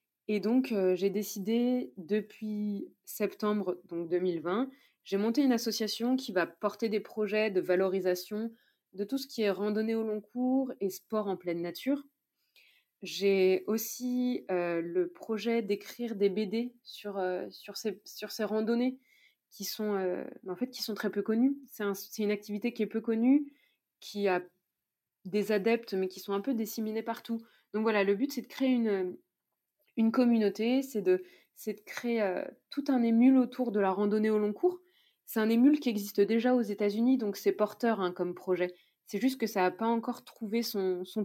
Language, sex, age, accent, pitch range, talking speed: French, female, 20-39, French, 195-240 Hz, 190 wpm